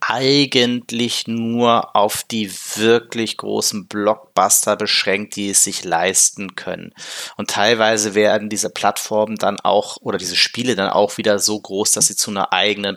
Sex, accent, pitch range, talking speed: male, German, 100-120 Hz, 155 wpm